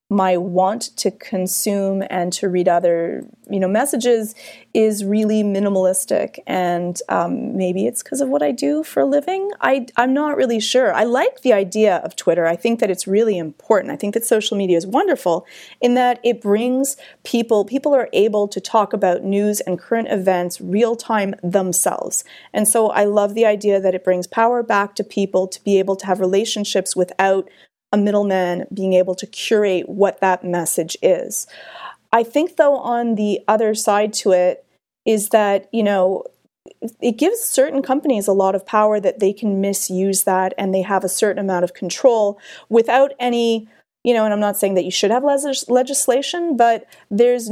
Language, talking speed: English, 185 wpm